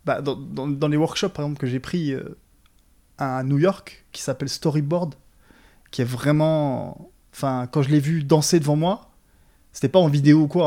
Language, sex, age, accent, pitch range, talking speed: French, male, 20-39, French, 125-150 Hz, 195 wpm